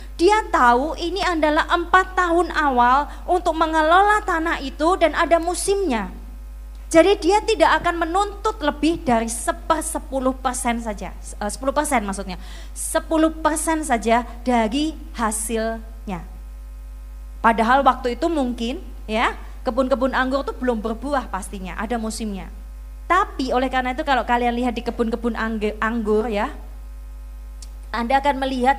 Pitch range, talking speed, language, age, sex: 225-330 Hz, 115 wpm, Indonesian, 20-39, female